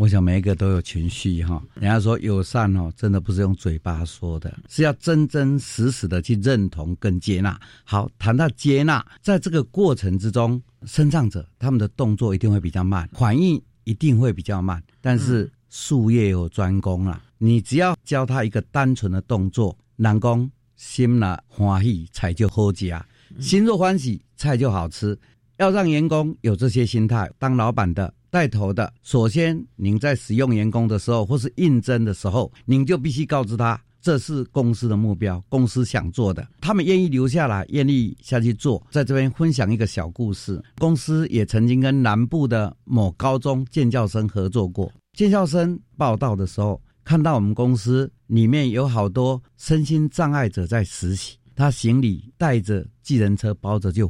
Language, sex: Chinese, male